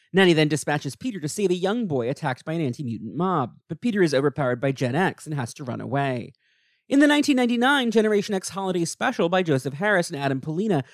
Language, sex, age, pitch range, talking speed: English, male, 40-59, 135-205 Hz, 215 wpm